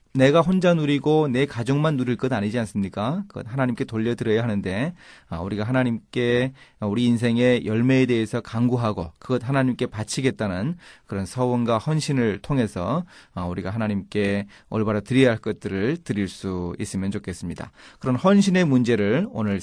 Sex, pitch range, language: male, 105-145 Hz, Korean